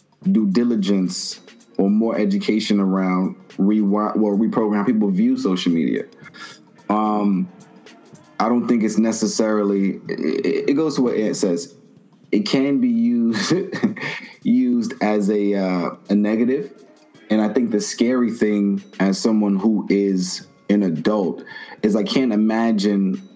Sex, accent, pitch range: male, American, 95-110 Hz